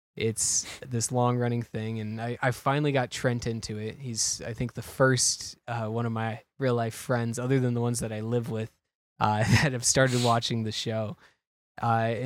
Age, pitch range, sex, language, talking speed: 10-29, 115-125 Hz, male, English, 190 wpm